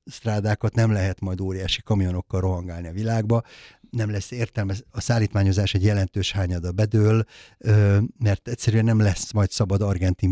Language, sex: Hungarian, male